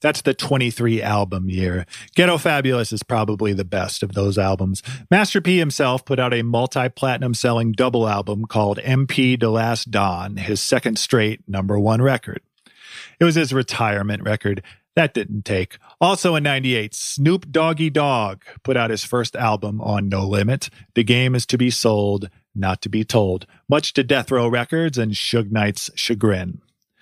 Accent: American